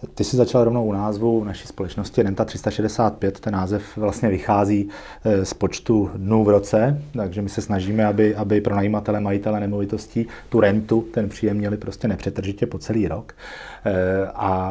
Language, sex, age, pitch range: Czech, male, 30-49, 100-125 Hz